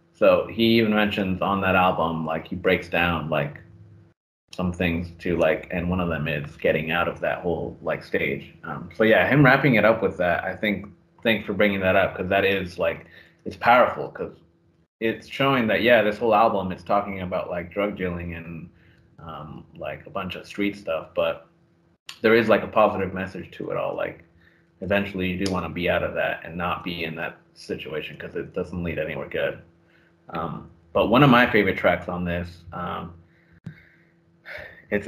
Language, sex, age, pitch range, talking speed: English, male, 30-49, 85-105 Hz, 195 wpm